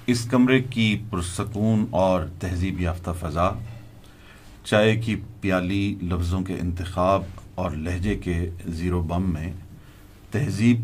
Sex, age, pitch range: male, 40-59, 95-120 Hz